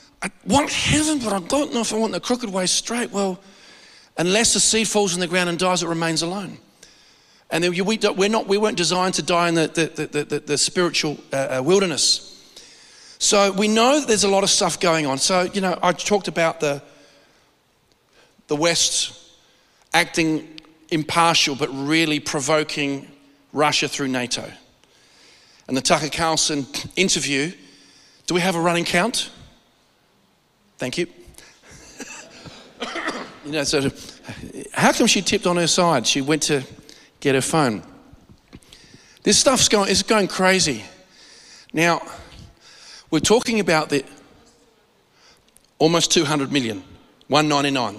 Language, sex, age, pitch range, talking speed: English, male, 40-59, 145-190 Hz, 150 wpm